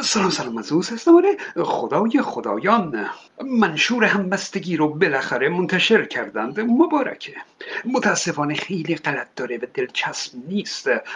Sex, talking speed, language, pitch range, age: male, 115 wpm, Persian, 160-215 Hz, 60-79